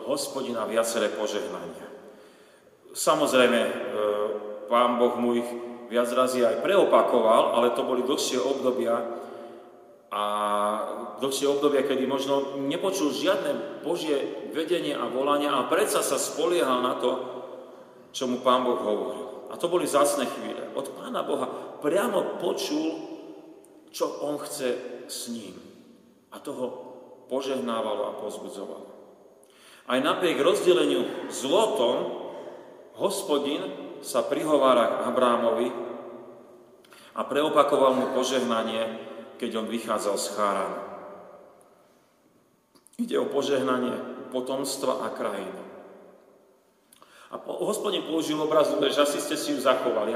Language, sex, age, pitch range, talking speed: Slovak, male, 40-59, 120-155 Hz, 110 wpm